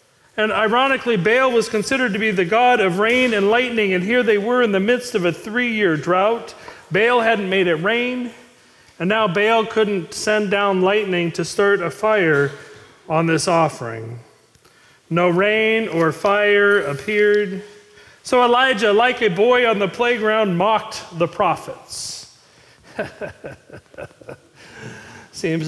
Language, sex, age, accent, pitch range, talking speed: English, male, 40-59, American, 160-220 Hz, 140 wpm